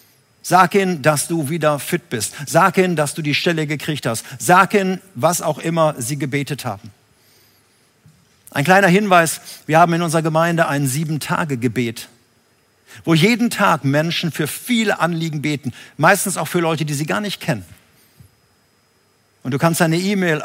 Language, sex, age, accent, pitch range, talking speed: German, male, 50-69, German, 130-175 Hz, 160 wpm